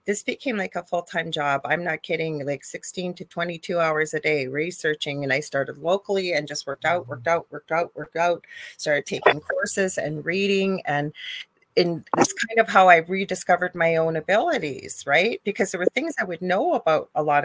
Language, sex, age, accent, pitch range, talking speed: English, female, 30-49, American, 165-195 Hz, 200 wpm